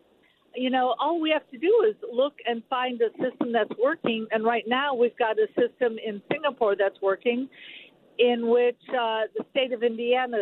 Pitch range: 205-255 Hz